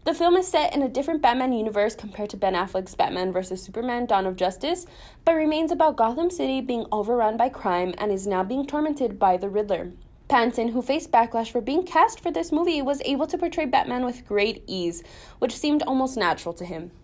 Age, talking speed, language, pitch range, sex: 20-39, 210 wpm, English, 215-310 Hz, female